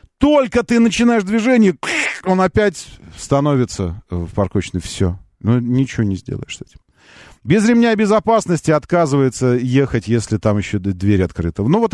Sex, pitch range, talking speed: male, 115-170 Hz, 135 wpm